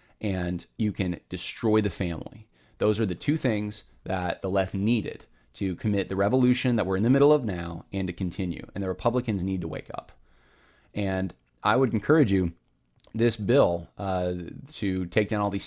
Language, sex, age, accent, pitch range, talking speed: English, male, 20-39, American, 90-120 Hz, 190 wpm